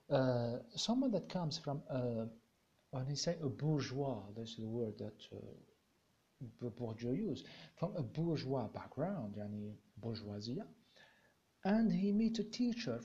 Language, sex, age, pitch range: Arabic, male, 50-69, 130-190 Hz